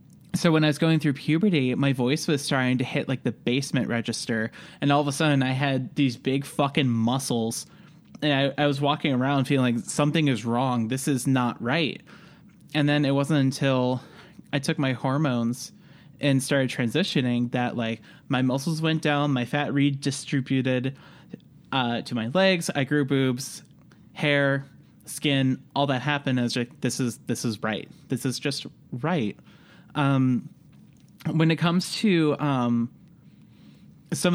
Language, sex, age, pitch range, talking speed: English, male, 20-39, 125-155 Hz, 165 wpm